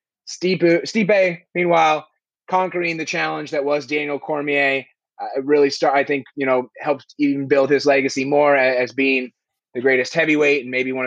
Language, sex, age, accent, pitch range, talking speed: English, male, 30-49, American, 125-155 Hz, 165 wpm